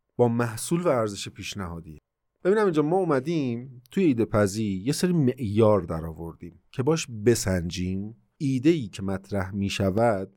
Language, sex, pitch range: Persian, male, 100-130 Hz